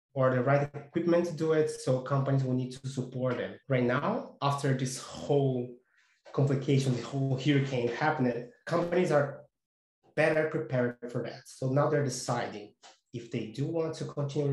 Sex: male